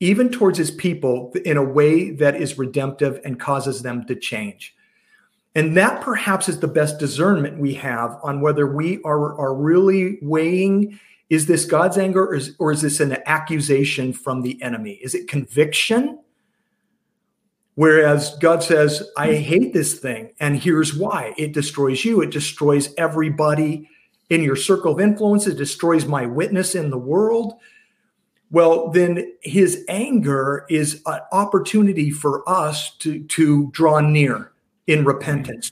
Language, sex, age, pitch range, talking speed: English, male, 40-59, 140-195 Hz, 150 wpm